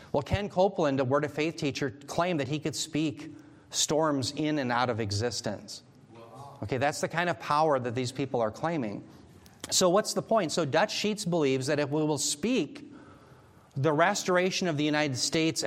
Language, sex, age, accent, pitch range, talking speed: English, male, 40-59, American, 135-175 Hz, 190 wpm